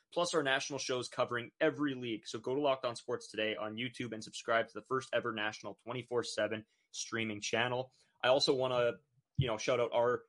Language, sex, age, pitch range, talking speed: English, male, 20-39, 110-130 Hz, 205 wpm